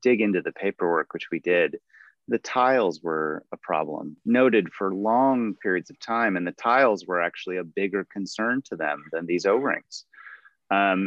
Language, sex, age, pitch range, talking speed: English, male, 30-49, 90-105 Hz, 175 wpm